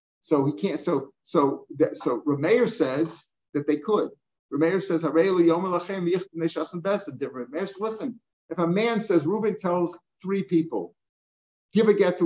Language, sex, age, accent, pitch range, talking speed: English, male, 50-69, American, 150-190 Hz, 130 wpm